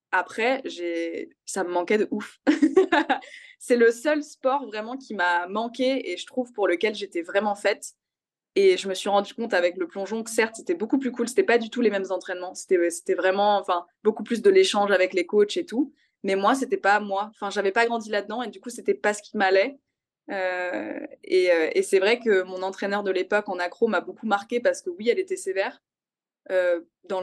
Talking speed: 225 wpm